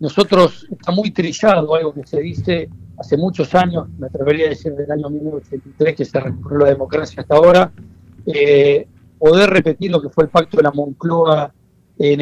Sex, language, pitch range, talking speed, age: male, Spanish, 145-185 Hz, 185 wpm, 60-79